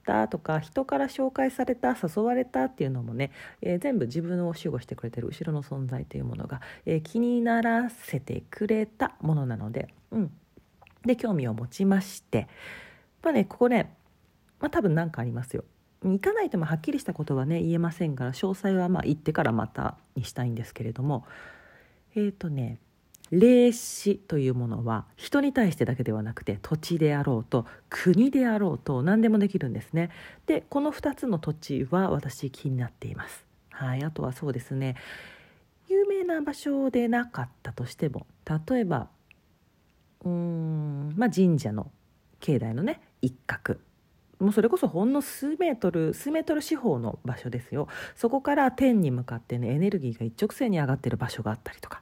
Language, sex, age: Japanese, female, 40-59